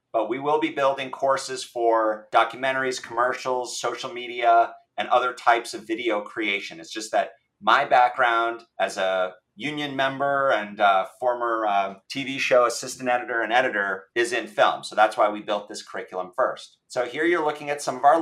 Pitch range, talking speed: 120-195 Hz, 180 wpm